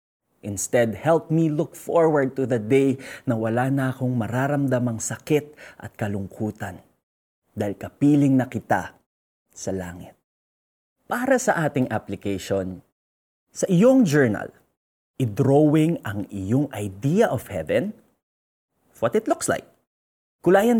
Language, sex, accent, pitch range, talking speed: Filipino, male, native, 110-155 Hz, 115 wpm